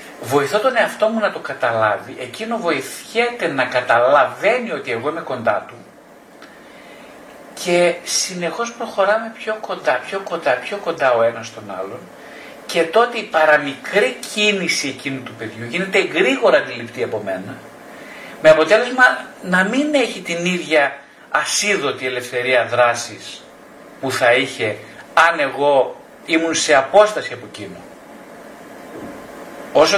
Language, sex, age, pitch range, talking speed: Greek, male, 50-69, 125-180 Hz, 125 wpm